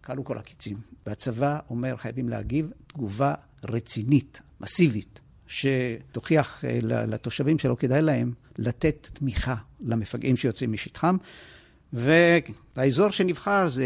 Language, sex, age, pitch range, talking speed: Hebrew, male, 60-79, 120-160 Hz, 100 wpm